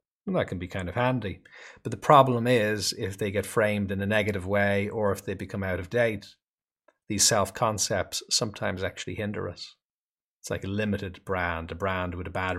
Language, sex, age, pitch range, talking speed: English, male, 30-49, 95-130 Hz, 195 wpm